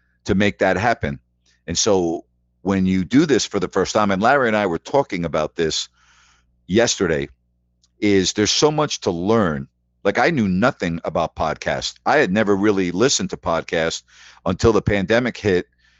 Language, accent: English, American